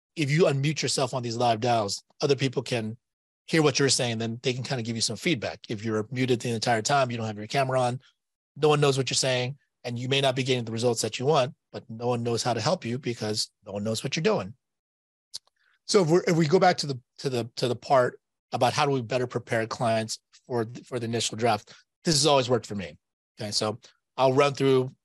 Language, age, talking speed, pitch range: English, 30-49, 250 wpm, 115-135 Hz